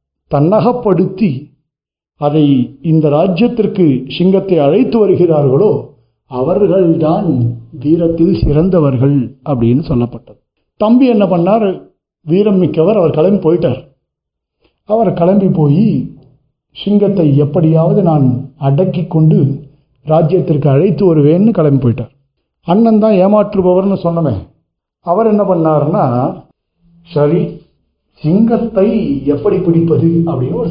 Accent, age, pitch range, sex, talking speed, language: native, 60-79, 135-195 Hz, male, 90 wpm, Tamil